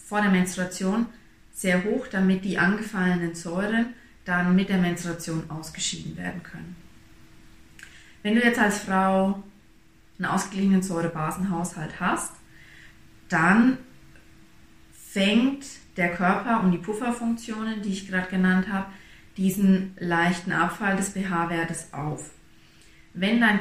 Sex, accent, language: female, German, German